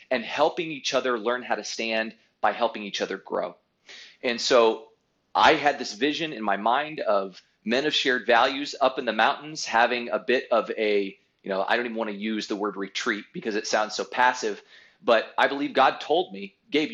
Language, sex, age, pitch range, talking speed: English, male, 30-49, 115-145 Hz, 210 wpm